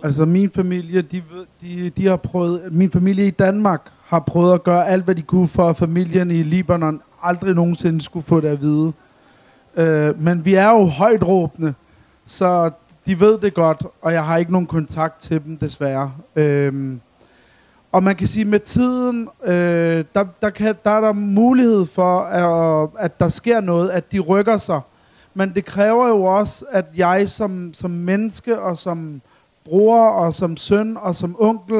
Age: 30-49